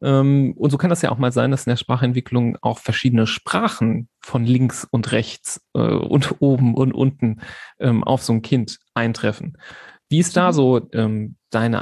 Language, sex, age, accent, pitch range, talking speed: German, male, 40-59, German, 120-150 Hz, 170 wpm